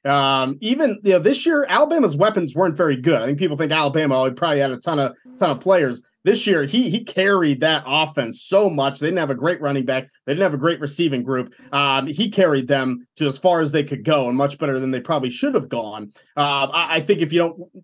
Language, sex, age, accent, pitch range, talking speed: English, male, 20-39, American, 145-180 Hz, 255 wpm